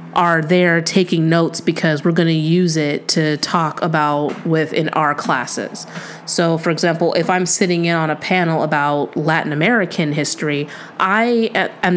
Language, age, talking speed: English, 30-49, 160 wpm